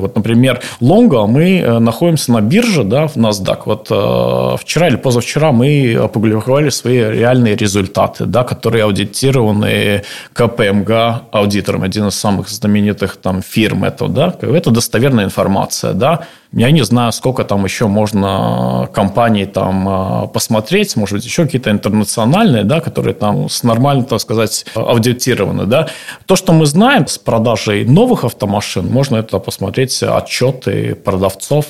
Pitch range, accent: 105-130 Hz, native